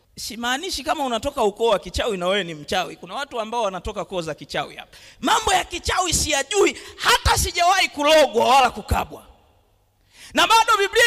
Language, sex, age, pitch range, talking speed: Swahili, male, 40-59, 290-400 Hz, 170 wpm